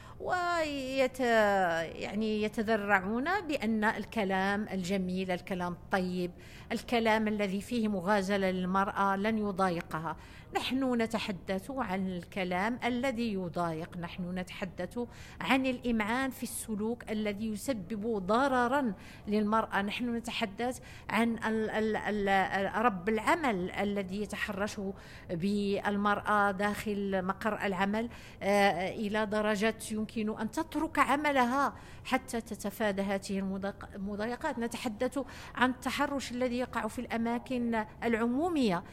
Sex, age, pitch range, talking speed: female, 50-69, 205-255 Hz, 90 wpm